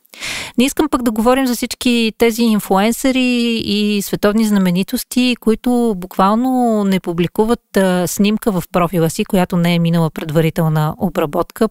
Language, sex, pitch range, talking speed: Bulgarian, female, 180-240 Hz, 140 wpm